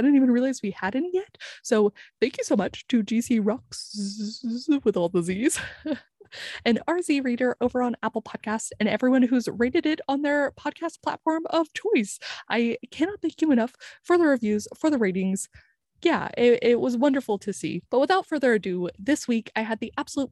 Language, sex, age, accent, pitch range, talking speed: English, female, 20-39, American, 210-275 Hz, 190 wpm